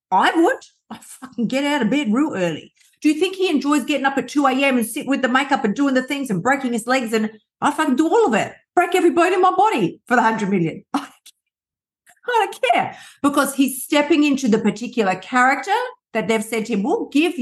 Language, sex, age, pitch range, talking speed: English, female, 50-69, 190-270 Hz, 240 wpm